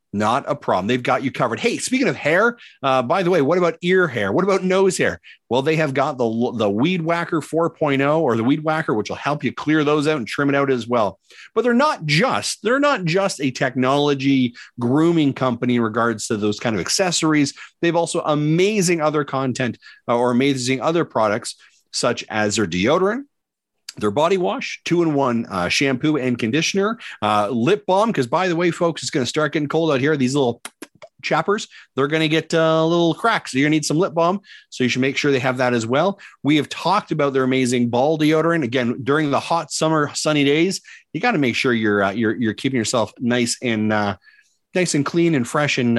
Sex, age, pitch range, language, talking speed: male, 40-59, 125-170 Hz, English, 220 wpm